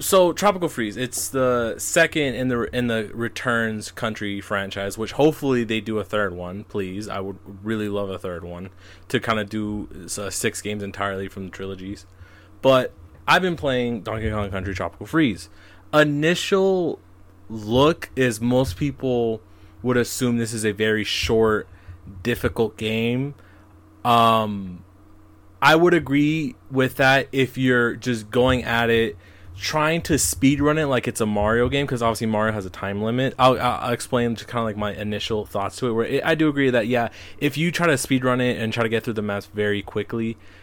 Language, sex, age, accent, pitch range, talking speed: English, male, 20-39, American, 100-125 Hz, 185 wpm